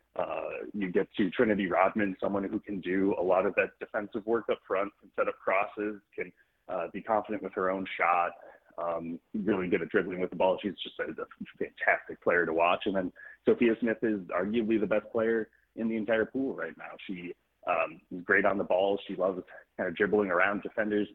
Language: English